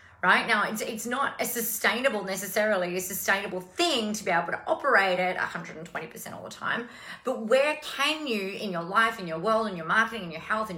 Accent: Australian